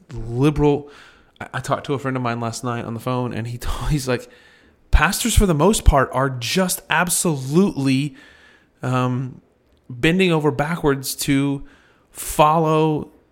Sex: male